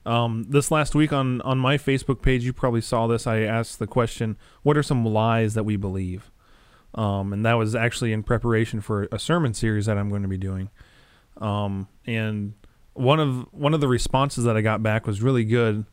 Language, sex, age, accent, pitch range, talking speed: English, male, 20-39, American, 110-135 Hz, 210 wpm